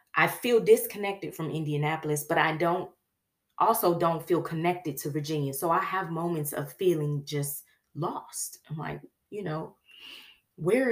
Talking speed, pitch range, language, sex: 150 wpm, 155-255 Hz, English, female